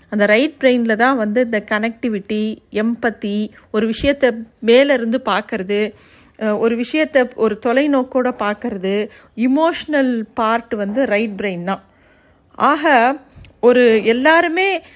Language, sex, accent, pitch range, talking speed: Tamil, female, native, 215-265 Hz, 105 wpm